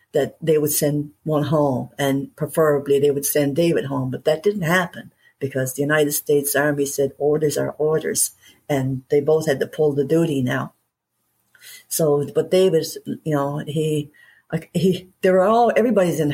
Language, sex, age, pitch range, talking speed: English, female, 60-79, 135-150 Hz, 175 wpm